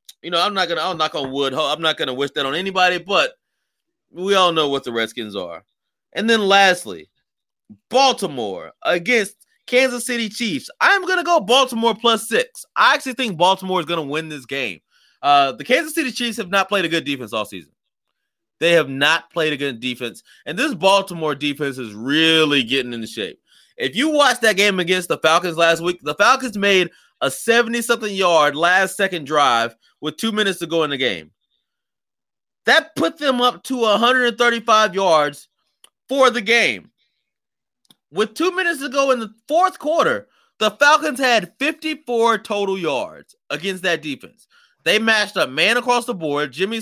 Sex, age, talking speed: male, 20-39, 175 wpm